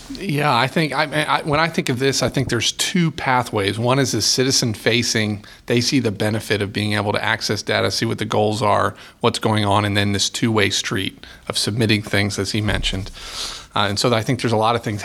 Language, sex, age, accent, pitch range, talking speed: English, male, 30-49, American, 110-140 Hz, 230 wpm